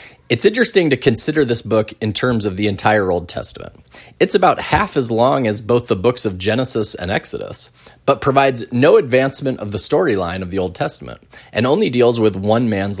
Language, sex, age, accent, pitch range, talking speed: English, male, 20-39, American, 105-130 Hz, 200 wpm